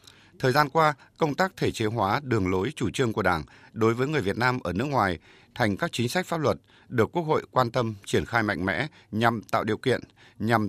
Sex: male